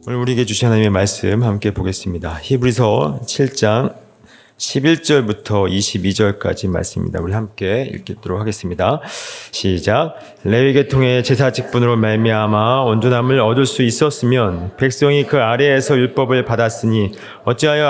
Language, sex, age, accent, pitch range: Korean, male, 40-59, native, 115-140 Hz